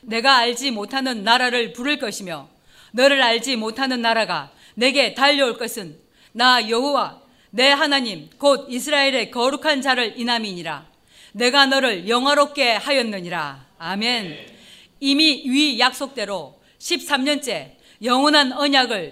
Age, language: 40-59, Korean